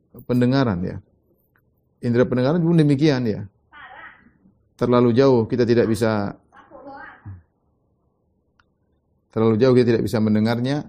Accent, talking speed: native, 100 wpm